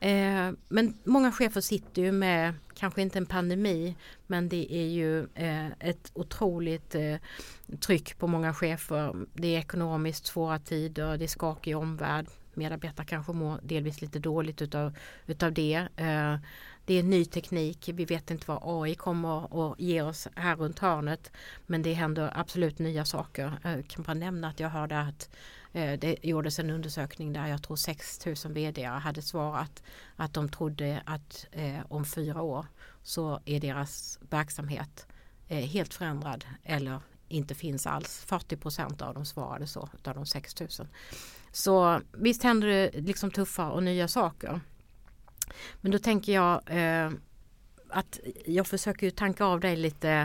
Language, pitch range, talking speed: Swedish, 150-175 Hz, 155 wpm